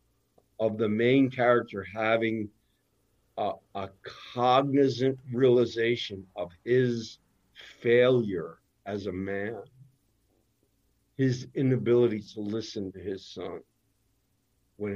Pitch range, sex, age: 100-125 Hz, male, 50-69